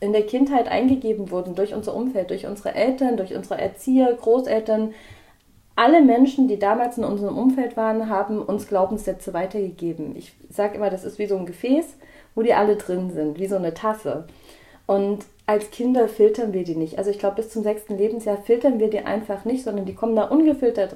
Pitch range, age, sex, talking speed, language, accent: 195-245 Hz, 30-49, female, 200 wpm, German, German